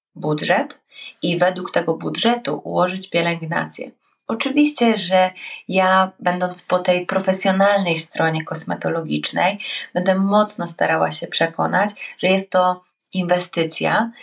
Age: 20-39